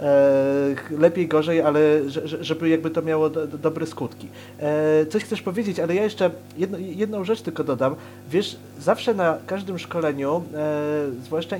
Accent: native